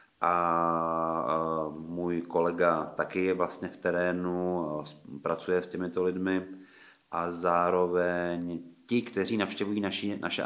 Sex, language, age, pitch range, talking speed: male, Czech, 30-49, 85-95 Hz, 110 wpm